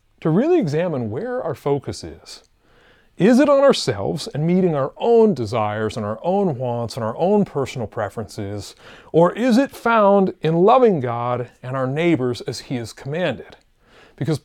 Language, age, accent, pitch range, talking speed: English, 30-49, American, 125-185 Hz, 165 wpm